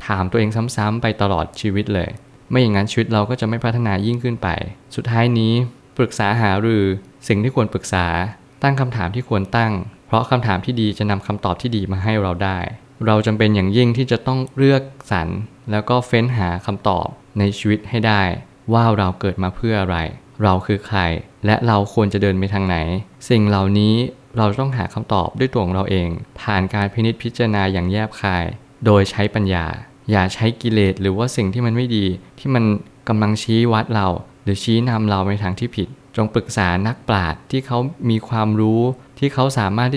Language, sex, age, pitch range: Thai, male, 20-39, 100-120 Hz